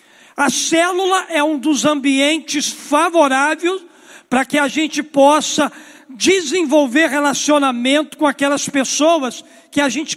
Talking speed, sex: 120 wpm, male